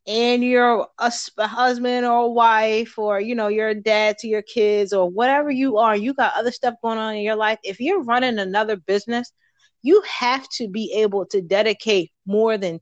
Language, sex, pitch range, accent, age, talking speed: English, female, 200-260 Hz, American, 30-49, 200 wpm